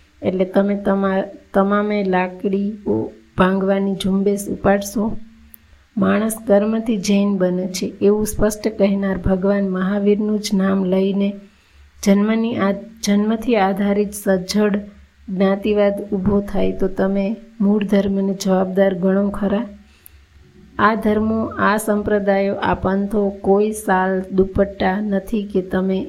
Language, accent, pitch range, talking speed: Gujarati, native, 190-205 Hz, 110 wpm